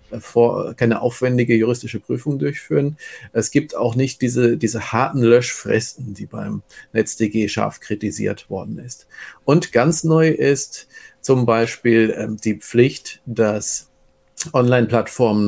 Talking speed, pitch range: 120 wpm, 105-125 Hz